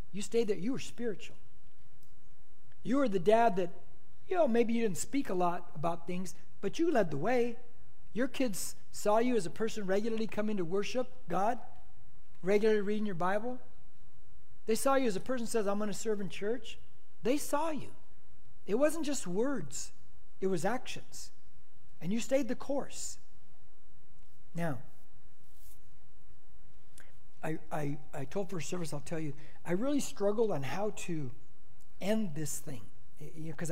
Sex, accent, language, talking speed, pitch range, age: male, American, English, 165 wpm, 150-220 Hz, 60-79